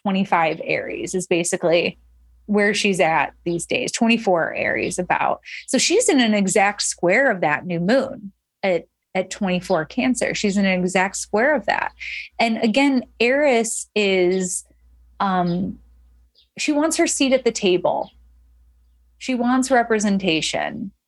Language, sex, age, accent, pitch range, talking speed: English, female, 30-49, American, 180-230 Hz, 135 wpm